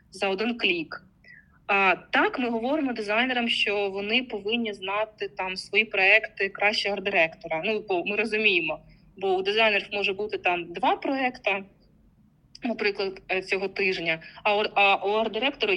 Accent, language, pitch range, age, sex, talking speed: native, Ukrainian, 195-235 Hz, 20-39, female, 135 wpm